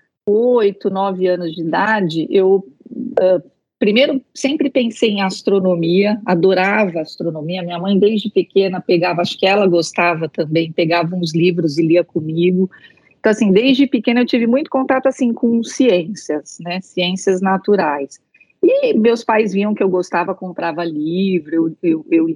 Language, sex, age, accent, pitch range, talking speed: Portuguese, female, 40-59, Brazilian, 175-225 Hz, 150 wpm